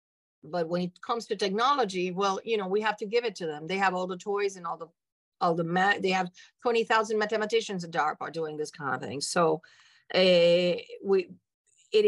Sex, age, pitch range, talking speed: female, 50-69, 180-225 Hz, 210 wpm